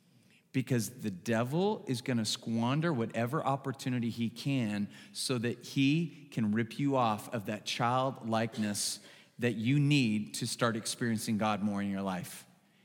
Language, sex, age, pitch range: English, male, 40-59, 135-210 Hz